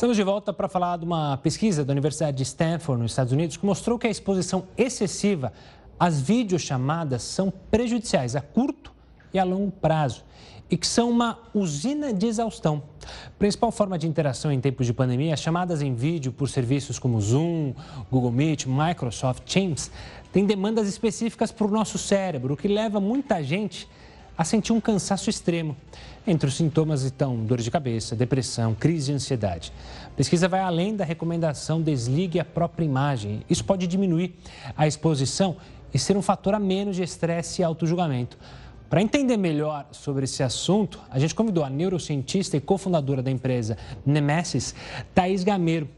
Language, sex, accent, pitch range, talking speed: Portuguese, male, Brazilian, 140-195 Hz, 170 wpm